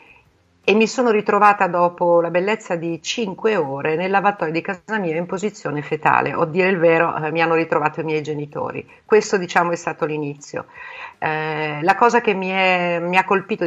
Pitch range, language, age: 160-205 Hz, Italian, 50-69